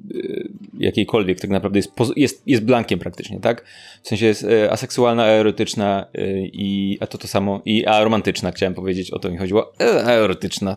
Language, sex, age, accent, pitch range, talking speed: Polish, male, 20-39, native, 105-130 Hz, 165 wpm